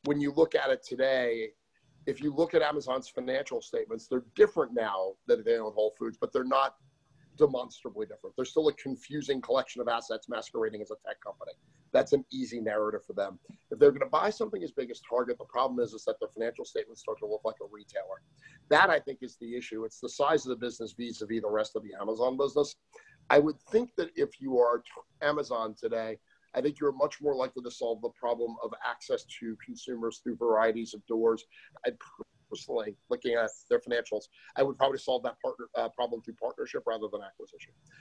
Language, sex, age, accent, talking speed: English, male, 30-49, American, 205 wpm